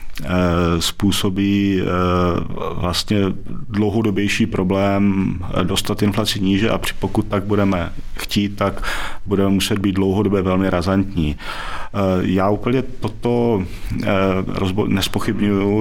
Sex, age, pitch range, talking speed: male, 40-59, 95-110 Hz, 85 wpm